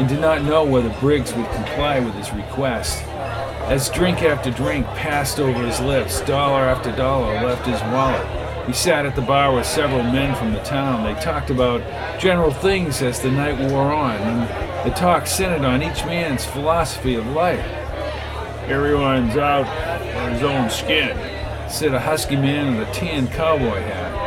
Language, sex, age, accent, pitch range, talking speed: English, male, 50-69, American, 125-175 Hz, 175 wpm